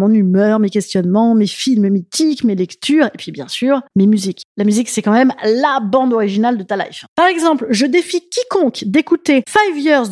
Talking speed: 200 wpm